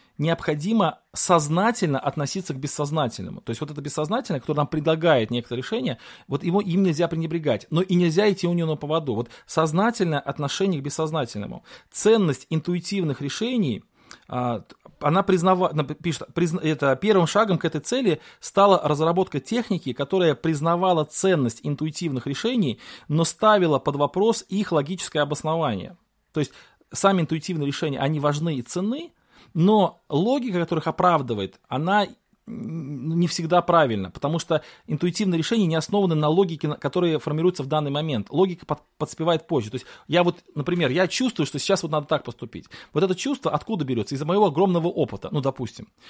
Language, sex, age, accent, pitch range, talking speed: Russian, male, 30-49, native, 145-190 Hz, 155 wpm